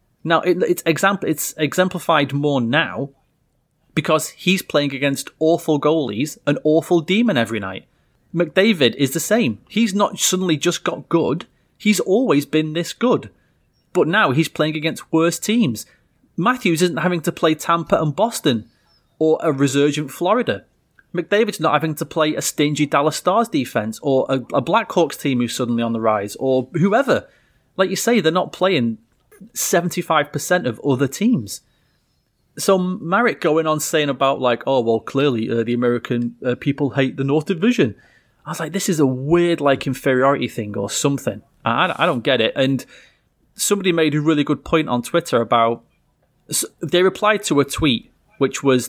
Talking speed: 165 wpm